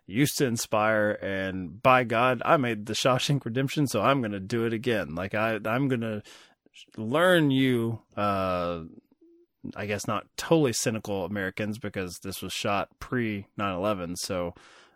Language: English